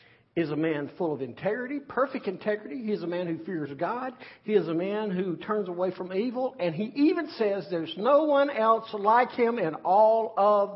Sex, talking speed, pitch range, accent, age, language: male, 210 wpm, 140-225 Hz, American, 50-69, English